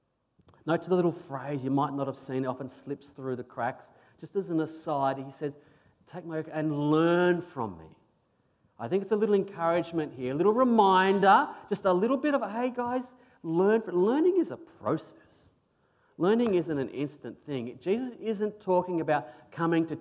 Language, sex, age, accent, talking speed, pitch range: English, male, 40-59, Australian, 185 wpm, 125-170 Hz